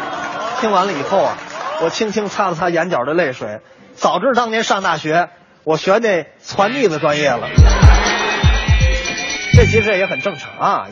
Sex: male